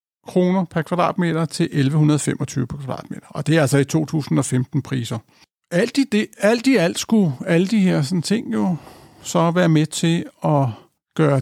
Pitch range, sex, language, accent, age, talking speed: 140-170 Hz, male, Danish, native, 60-79, 175 wpm